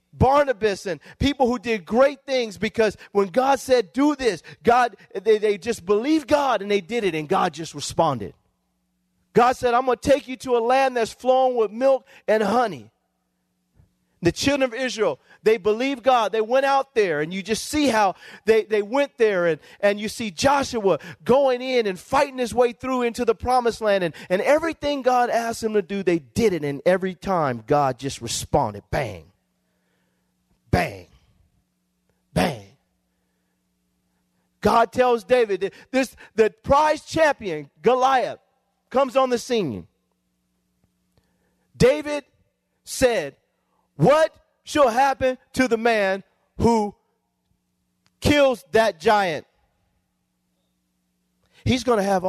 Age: 40-59